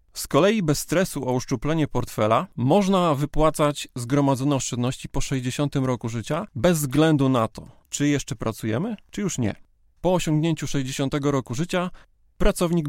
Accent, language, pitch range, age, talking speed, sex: native, Polish, 125-150 Hz, 30-49, 145 wpm, male